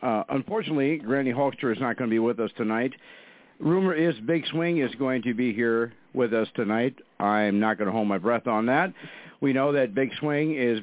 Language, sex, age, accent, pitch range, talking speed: English, male, 50-69, American, 125-170 Hz, 215 wpm